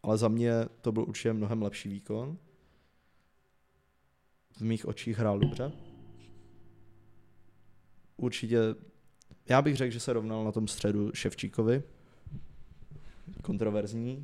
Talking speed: 110 wpm